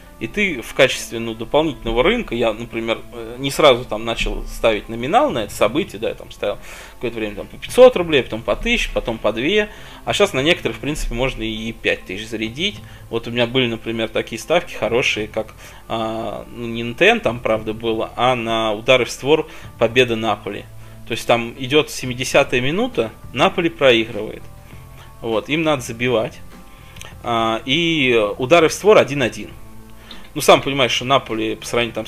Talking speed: 175 wpm